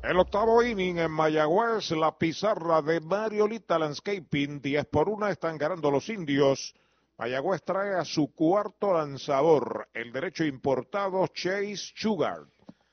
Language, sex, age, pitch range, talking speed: Spanish, male, 50-69, 140-190 Hz, 130 wpm